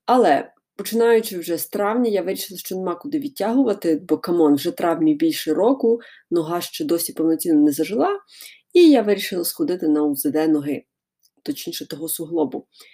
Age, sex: 20-39, female